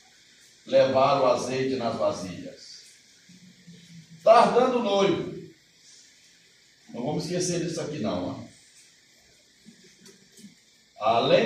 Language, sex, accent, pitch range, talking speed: Portuguese, male, Brazilian, 155-220 Hz, 85 wpm